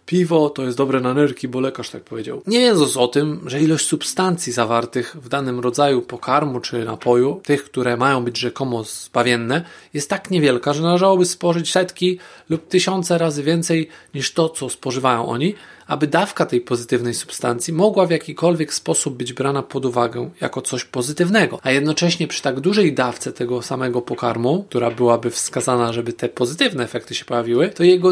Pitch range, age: 125-165 Hz, 20-39